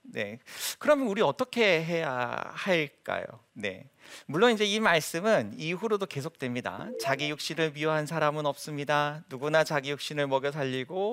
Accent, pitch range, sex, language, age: native, 125-170 Hz, male, Korean, 40-59